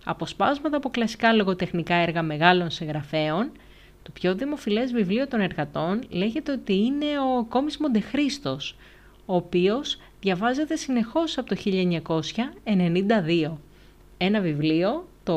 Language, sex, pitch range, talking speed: Greek, female, 165-250 Hz, 115 wpm